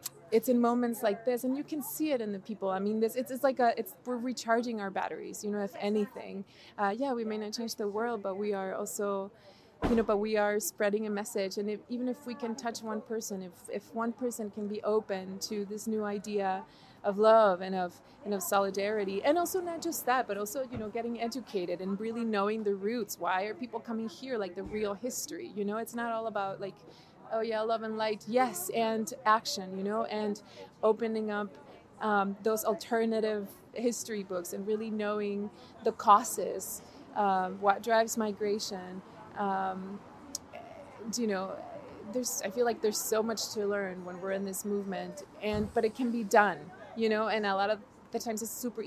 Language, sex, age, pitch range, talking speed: English, female, 20-39, 200-230 Hz, 205 wpm